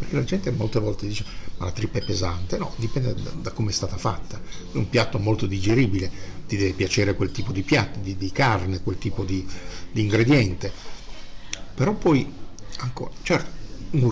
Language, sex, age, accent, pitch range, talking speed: Italian, male, 50-69, native, 95-120 Hz, 185 wpm